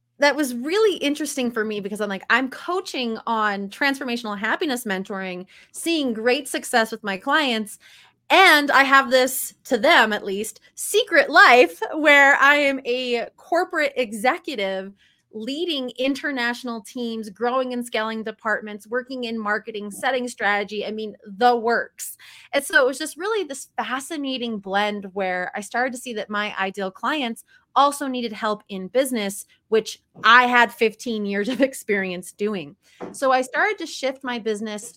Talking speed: 155 wpm